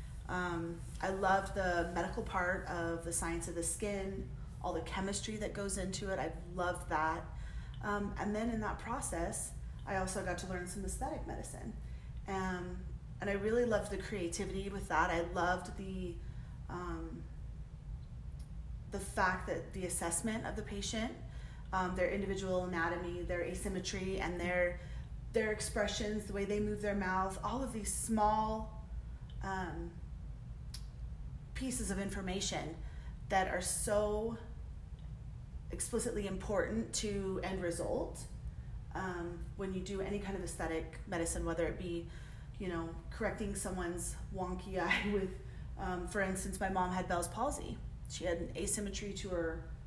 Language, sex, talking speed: English, female, 145 wpm